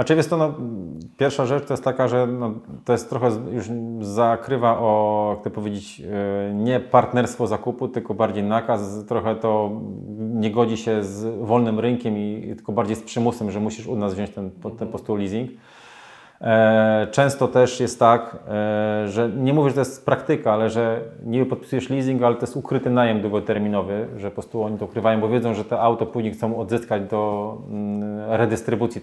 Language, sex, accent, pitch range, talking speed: Polish, male, native, 105-120 Hz, 165 wpm